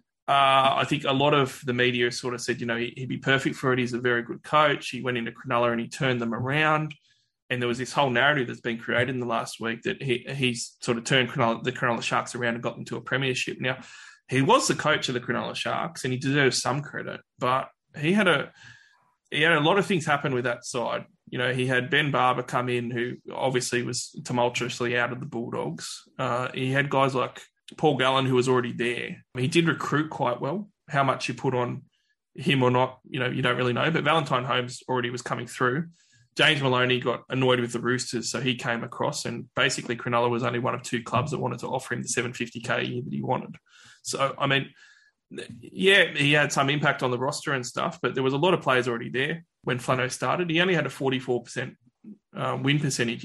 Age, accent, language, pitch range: 20-39, Australian, English, 120-140 Hz